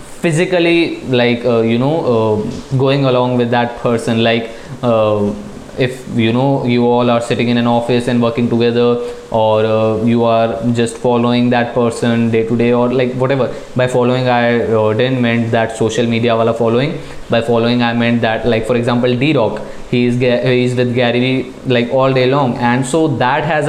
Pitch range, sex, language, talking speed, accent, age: 120-135 Hz, male, Hindi, 185 wpm, native, 20-39